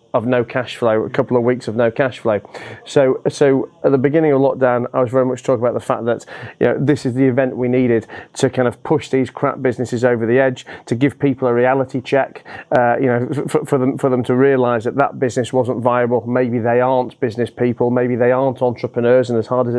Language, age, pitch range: English, 30-49, 120-135 Hz